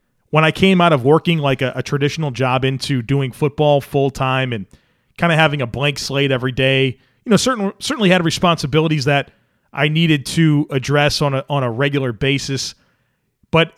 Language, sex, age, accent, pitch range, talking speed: English, male, 40-59, American, 130-155 Hz, 185 wpm